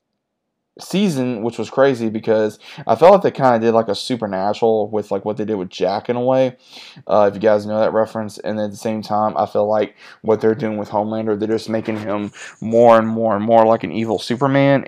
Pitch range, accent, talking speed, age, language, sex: 110-115 Hz, American, 235 wpm, 20-39, English, male